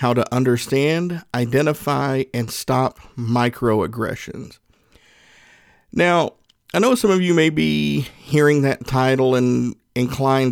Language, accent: English, American